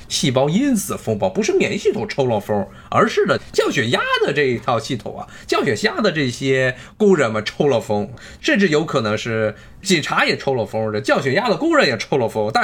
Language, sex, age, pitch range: Chinese, male, 20-39, 110-150 Hz